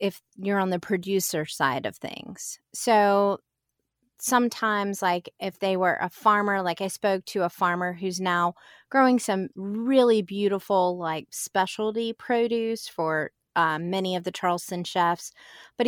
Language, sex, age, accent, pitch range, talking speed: English, female, 20-39, American, 175-215 Hz, 145 wpm